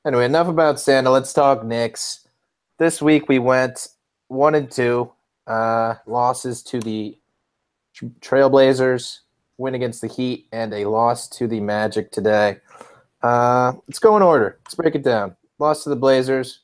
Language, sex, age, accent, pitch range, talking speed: English, male, 30-49, American, 115-135 Hz, 155 wpm